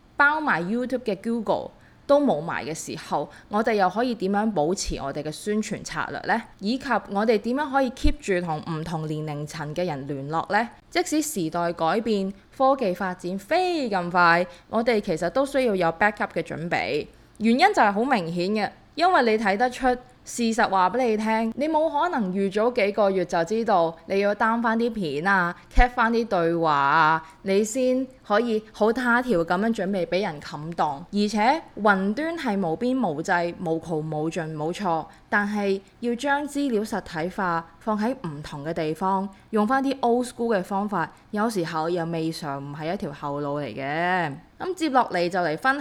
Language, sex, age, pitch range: Chinese, female, 20-39, 165-235 Hz